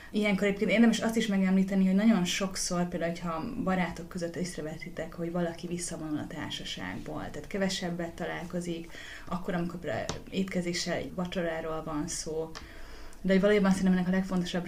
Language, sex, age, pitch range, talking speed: Hungarian, female, 30-49, 165-180 Hz, 145 wpm